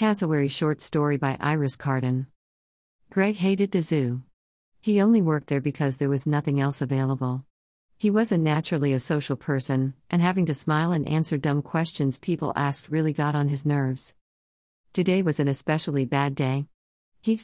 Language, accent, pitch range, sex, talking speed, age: English, American, 130-170 Hz, female, 165 wpm, 50-69